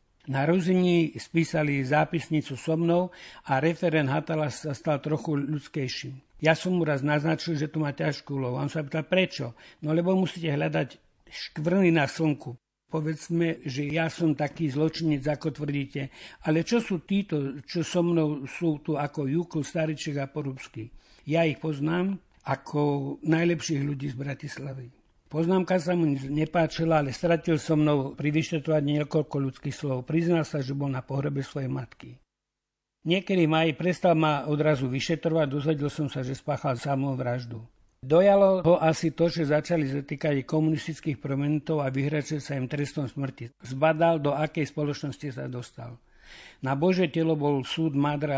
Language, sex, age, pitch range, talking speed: Slovak, male, 60-79, 140-160 Hz, 155 wpm